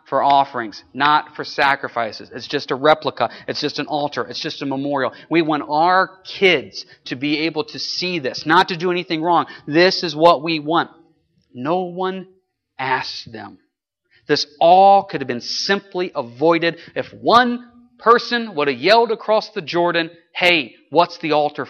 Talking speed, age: 170 wpm, 40-59